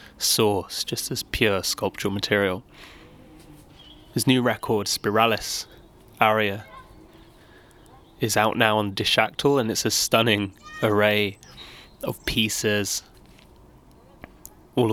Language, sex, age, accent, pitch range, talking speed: English, male, 20-39, British, 100-115 Hz, 95 wpm